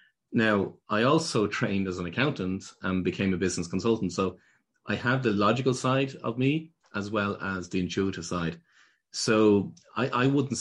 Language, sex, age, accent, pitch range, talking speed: English, male, 30-49, Irish, 90-115 Hz, 170 wpm